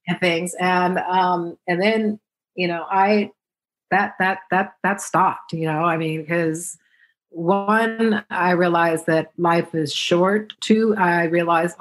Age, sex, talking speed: 40-59, female, 145 wpm